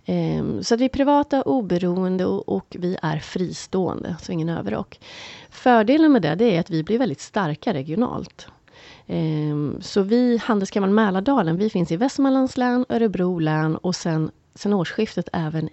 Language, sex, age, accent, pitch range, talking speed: Swedish, female, 30-49, native, 160-220 Hz, 150 wpm